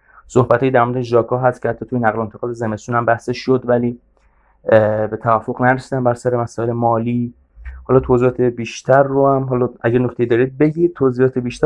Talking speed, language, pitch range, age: 175 wpm, Persian, 110-125 Hz, 20-39